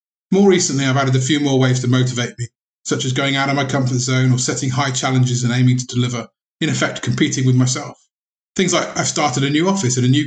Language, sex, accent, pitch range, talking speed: English, male, British, 125-150 Hz, 245 wpm